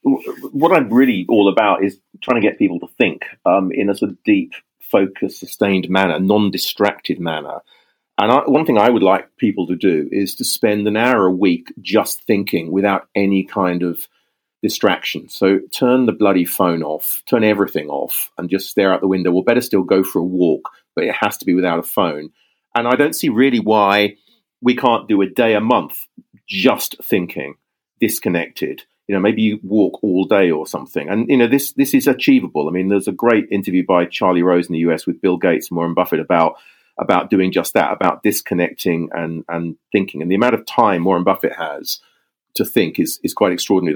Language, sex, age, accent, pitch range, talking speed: English, male, 40-59, British, 90-110 Hz, 205 wpm